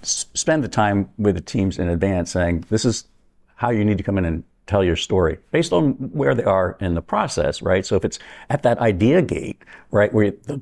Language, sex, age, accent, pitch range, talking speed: English, male, 60-79, American, 95-115 Hz, 225 wpm